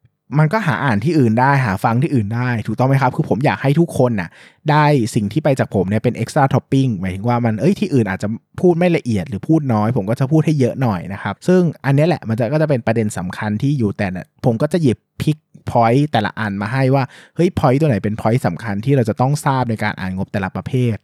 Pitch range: 105-135 Hz